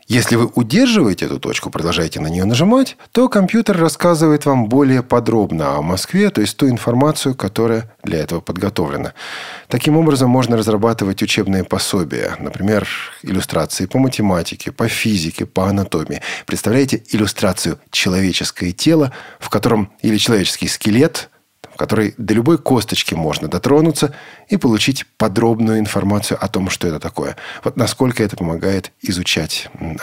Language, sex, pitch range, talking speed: Russian, male, 95-135 Hz, 140 wpm